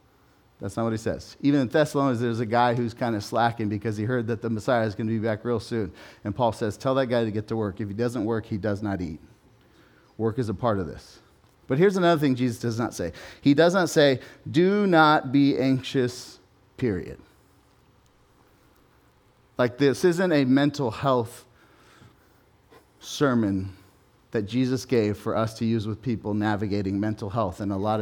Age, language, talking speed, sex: 40-59, English, 195 wpm, male